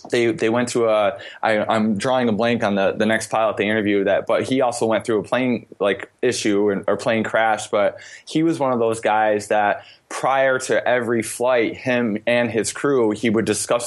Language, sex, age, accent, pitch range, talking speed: English, male, 20-39, American, 100-120 Hz, 215 wpm